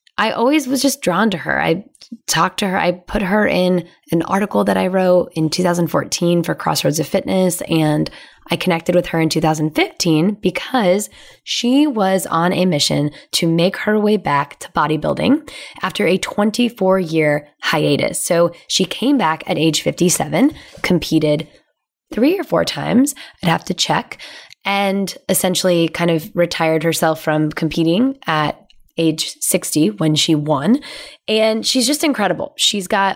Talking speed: 155 wpm